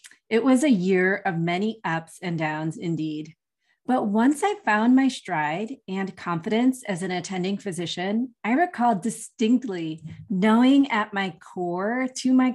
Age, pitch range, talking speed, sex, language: 30-49, 175-225 Hz, 150 wpm, female, English